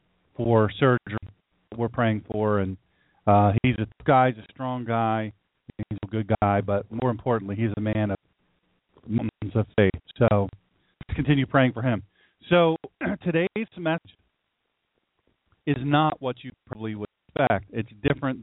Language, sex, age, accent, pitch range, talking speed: English, male, 40-59, American, 110-140 Hz, 155 wpm